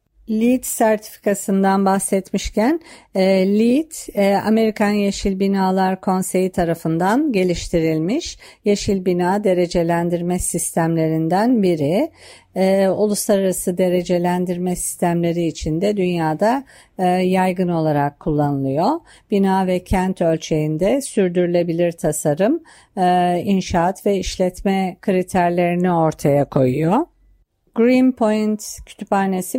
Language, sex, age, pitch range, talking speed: Turkish, female, 50-69, 170-205 Hz, 90 wpm